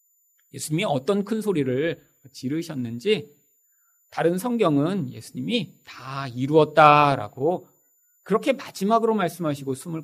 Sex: male